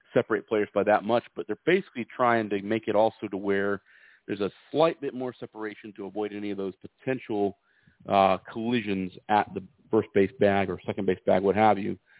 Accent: American